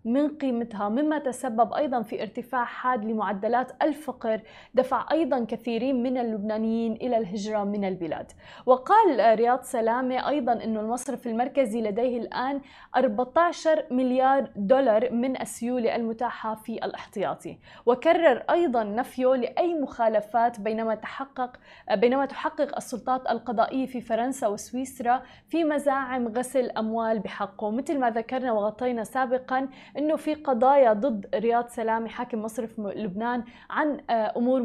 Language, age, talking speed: Arabic, 20-39, 125 wpm